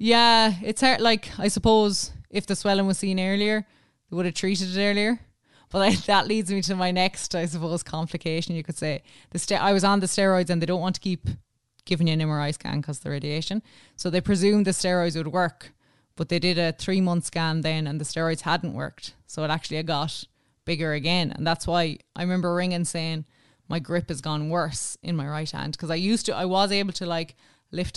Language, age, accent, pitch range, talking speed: English, 20-39, Irish, 155-180 Hz, 225 wpm